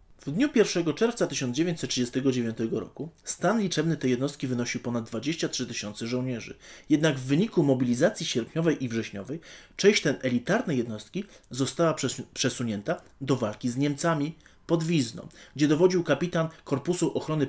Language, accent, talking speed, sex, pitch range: Polish, native, 135 wpm, male, 120-160 Hz